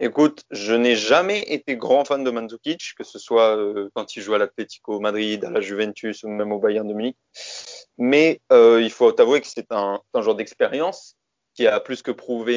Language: French